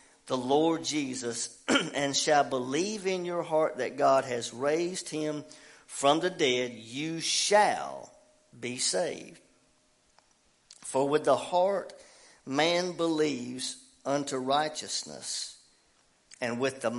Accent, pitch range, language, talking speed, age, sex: American, 125-165 Hz, English, 115 wpm, 50-69, male